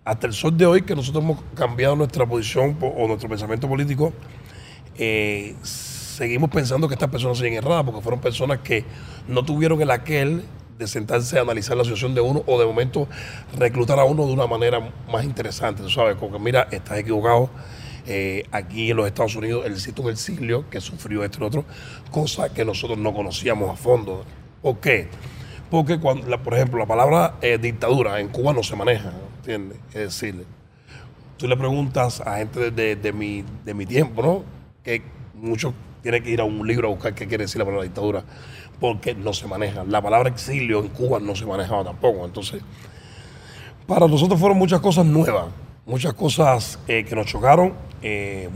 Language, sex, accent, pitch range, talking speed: English, male, American, 110-135 Hz, 190 wpm